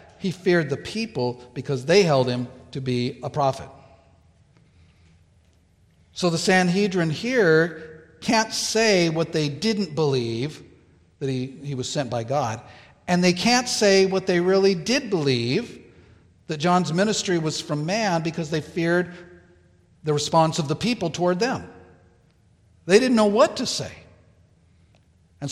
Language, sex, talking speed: English, male, 145 wpm